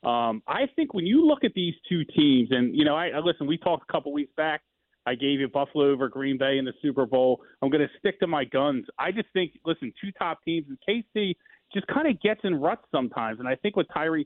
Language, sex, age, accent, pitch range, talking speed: English, male, 30-49, American, 120-155 Hz, 255 wpm